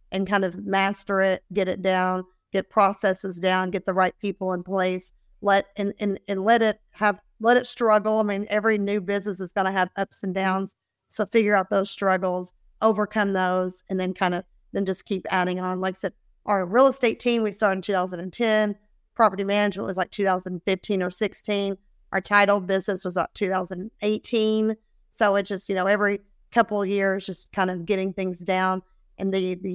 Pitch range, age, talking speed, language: 190-210 Hz, 30-49, 195 wpm, English